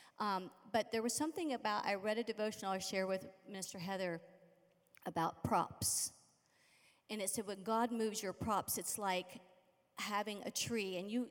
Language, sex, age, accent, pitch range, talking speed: English, female, 40-59, American, 190-240 Hz, 170 wpm